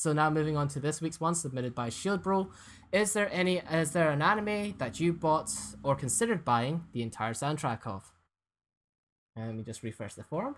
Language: English